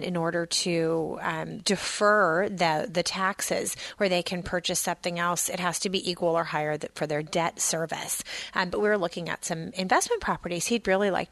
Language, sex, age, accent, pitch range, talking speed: English, female, 30-49, American, 175-215 Hz, 195 wpm